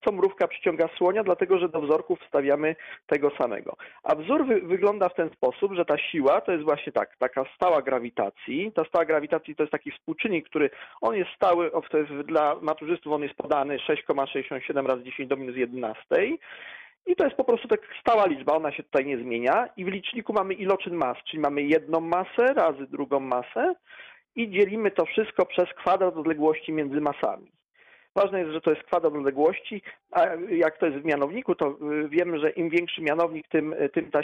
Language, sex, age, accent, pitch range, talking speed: Polish, male, 40-59, native, 150-200 Hz, 190 wpm